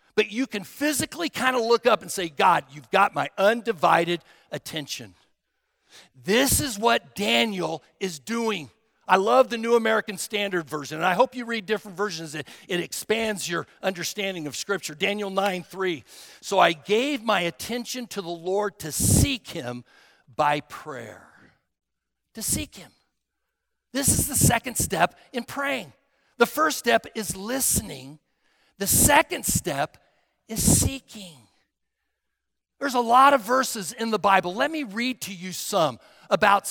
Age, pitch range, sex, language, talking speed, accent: 60-79, 170-245 Hz, male, English, 155 wpm, American